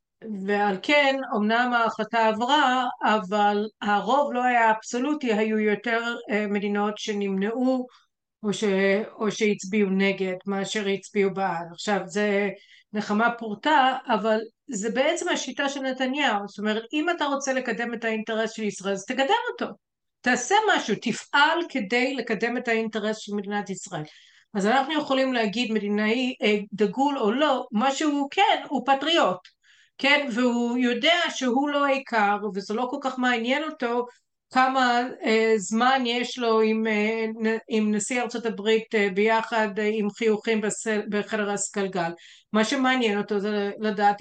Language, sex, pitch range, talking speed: Hebrew, female, 210-260 Hz, 130 wpm